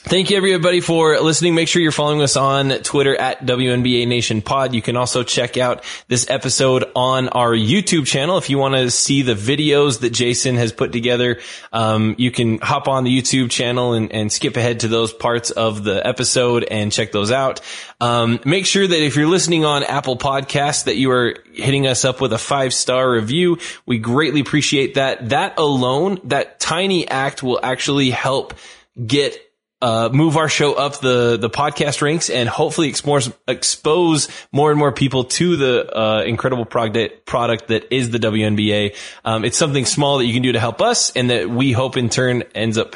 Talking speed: 195 wpm